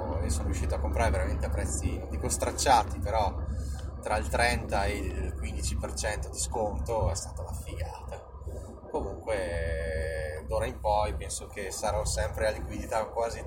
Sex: male